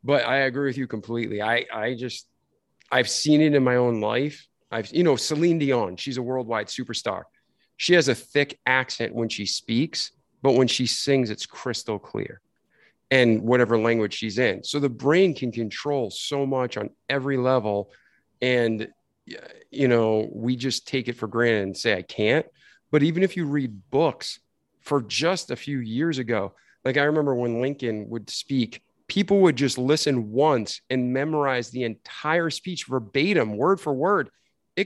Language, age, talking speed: English, 40-59, 175 wpm